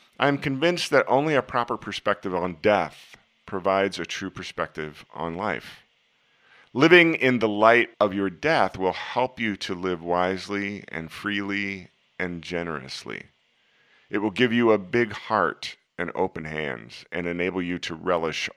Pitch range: 80-105 Hz